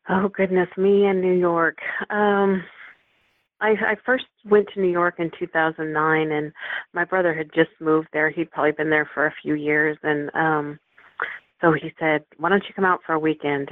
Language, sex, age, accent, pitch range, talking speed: English, female, 40-59, American, 155-180 Hz, 205 wpm